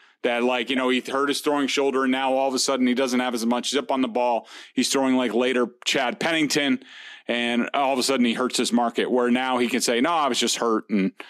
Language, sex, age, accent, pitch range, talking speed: English, male, 30-49, American, 125-150 Hz, 265 wpm